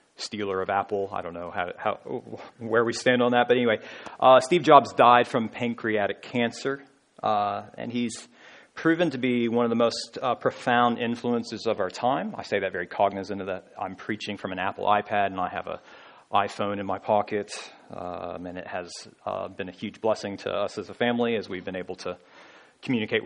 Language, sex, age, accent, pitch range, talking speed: English, male, 40-59, American, 105-125 Hz, 205 wpm